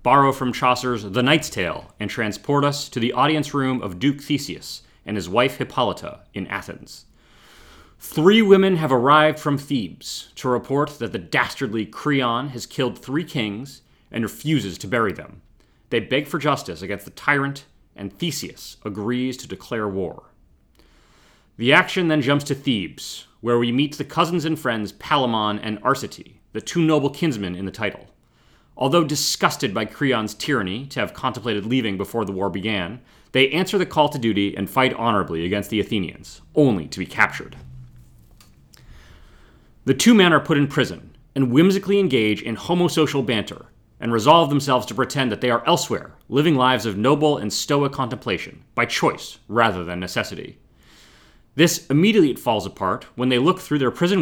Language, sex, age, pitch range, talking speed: English, male, 30-49, 105-145 Hz, 170 wpm